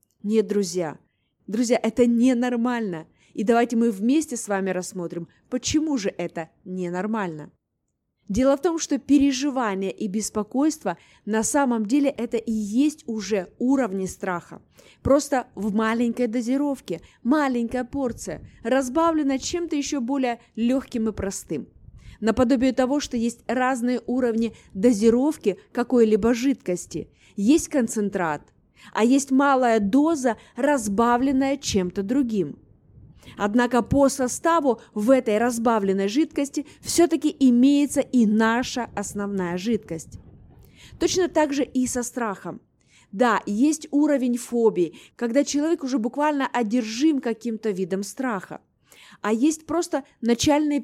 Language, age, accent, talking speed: Russian, 20-39, native, 115 wpm